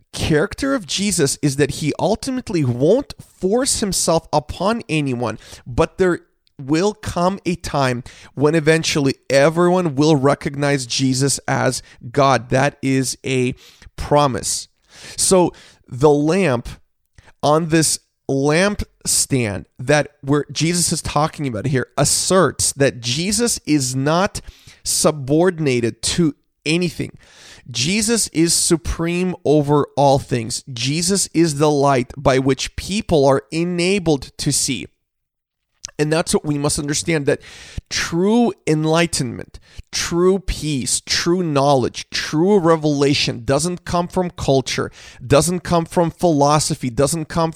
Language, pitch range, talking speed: English, 135-170 Hz, 115 wpm